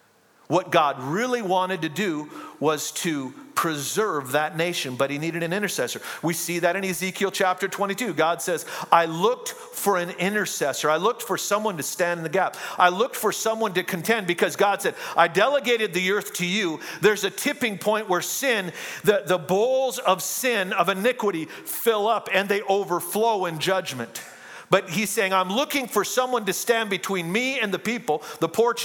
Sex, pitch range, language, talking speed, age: male, 180-225 Hz, English, 185 wpm, 50-69